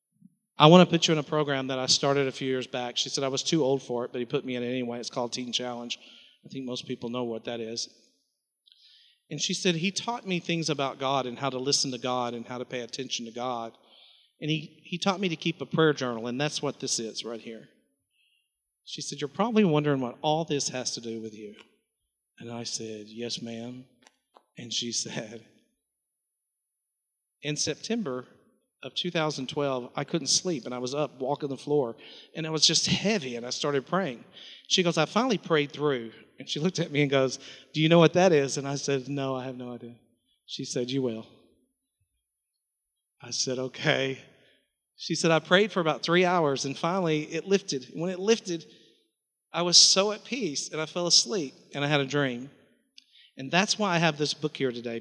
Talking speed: 215 wpm